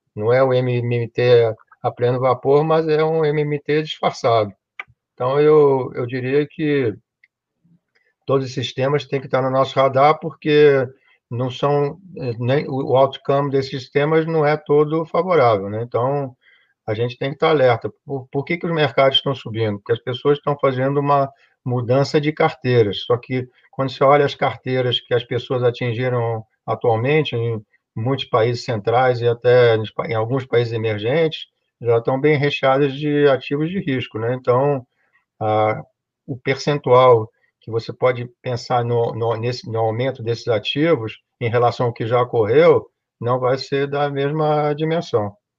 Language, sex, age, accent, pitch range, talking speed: Portuguese, male, 50-69, Brazilian, 120-145 Hz, 160 wpm